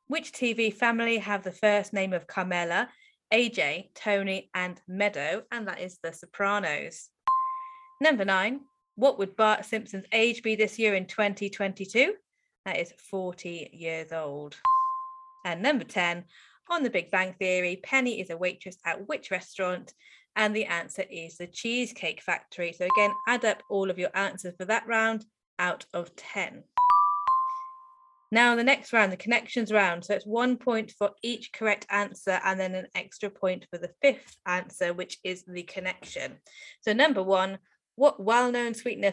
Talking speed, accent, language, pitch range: 165 wpm, British, English, 185-245 Hz